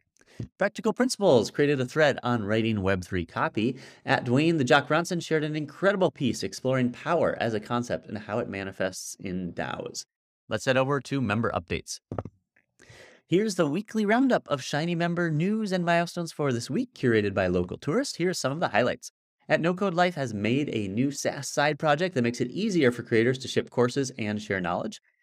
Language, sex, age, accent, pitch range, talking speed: English, male, 30-49, American, 120-155 Hz, 190 wpm